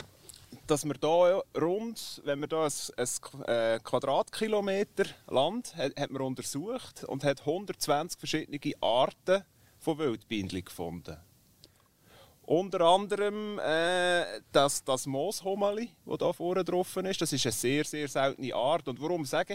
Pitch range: 135-180 Hz